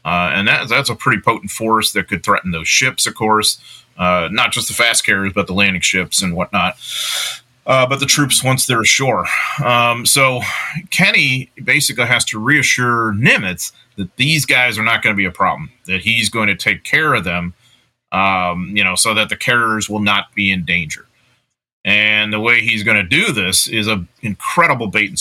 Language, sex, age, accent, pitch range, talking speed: English, male, 30-49, American, 95-115 Hz, 200 wpm